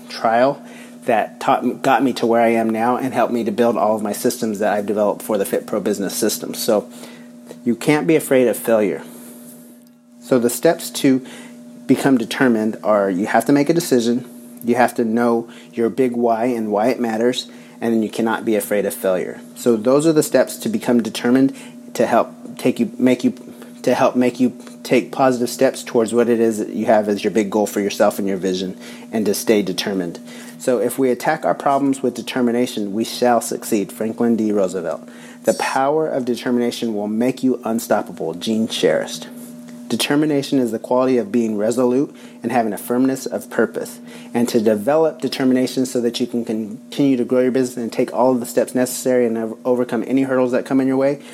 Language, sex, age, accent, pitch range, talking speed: English, male, 30-49, American, 115-130 Hz, 205 wpm